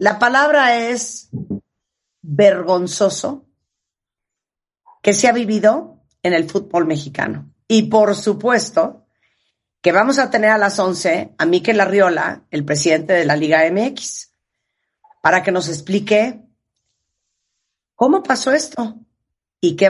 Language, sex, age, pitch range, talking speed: Spanish, female, 40-59, 175-235 Hz, 120 wpm